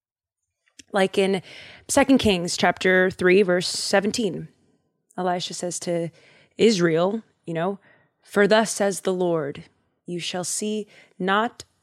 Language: English